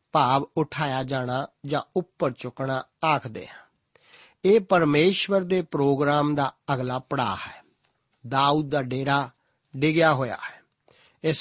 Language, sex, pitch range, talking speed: Punjabi, male, 140-175 Hz, 115 wpm